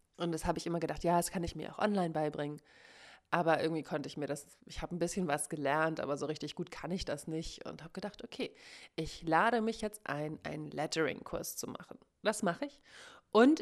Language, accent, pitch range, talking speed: German, German, 160-205 Hz, 225 wpm